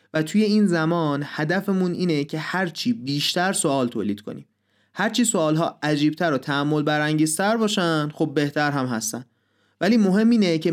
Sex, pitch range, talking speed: male, 135-180 Hz, 155 wpm